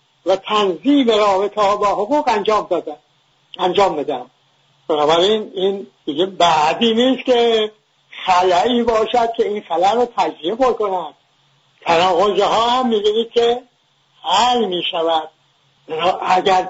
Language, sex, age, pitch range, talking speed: English, male, 60-79, 185-230 Hz, 110 wpm